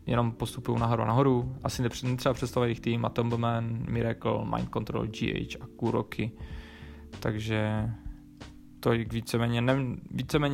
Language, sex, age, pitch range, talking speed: Czech, male, 20-39, 110-125 Hz, 115 wpm